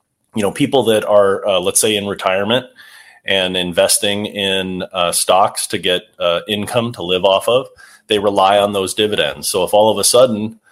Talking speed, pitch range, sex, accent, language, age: 190 wpm, 95-110 Hz, male, American, English, 30-49